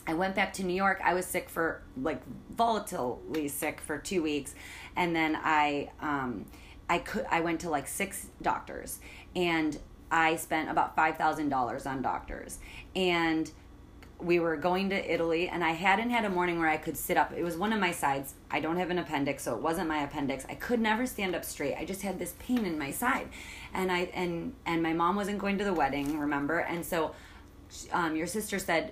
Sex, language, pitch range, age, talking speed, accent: female, English, 150-185 Hz, 30-49, 210 wpm, American